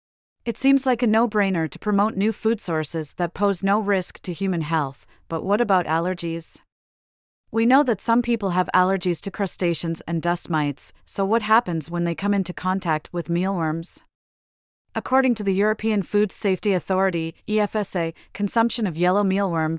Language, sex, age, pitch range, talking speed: English, female, 30-49, 165-210 Hz, 165 wpm